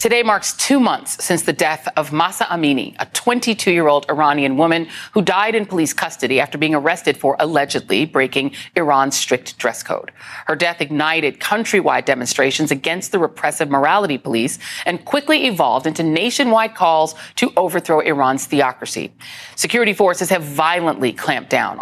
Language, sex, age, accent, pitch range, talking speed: English, female, 40-59, American, 145-185 Hz, 150 wpm